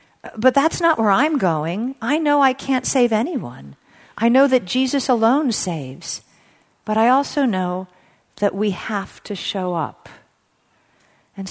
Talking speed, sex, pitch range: 150 wpm, female, 170-225 Hz